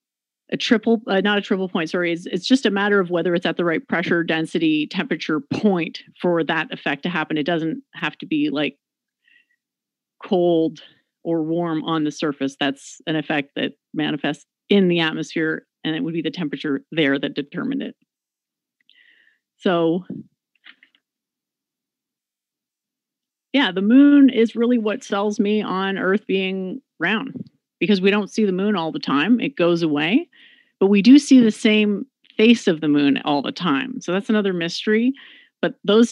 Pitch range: 170-245 Hz